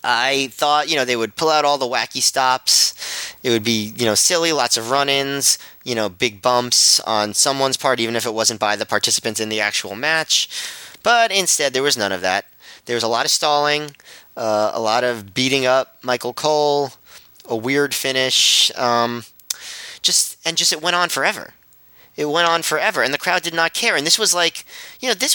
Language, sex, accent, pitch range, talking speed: English, male, American, 115-155 Hz, 210 wpm